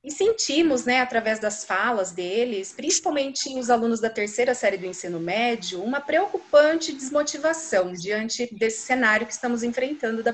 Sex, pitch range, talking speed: female, 215-285 Hz, 150 wpm